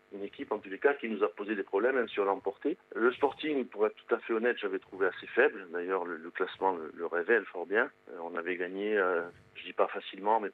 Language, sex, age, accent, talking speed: French, male, 40-59, French, 280 wpm